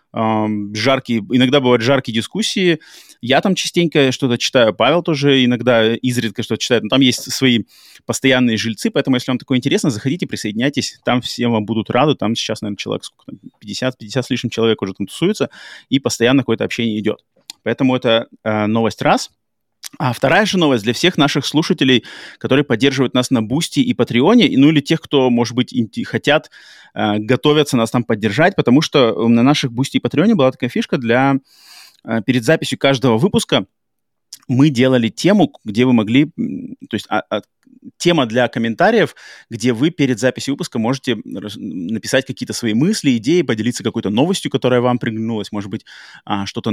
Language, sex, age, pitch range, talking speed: Russian, male, 20-39, 115-145 Hz, 175 wpm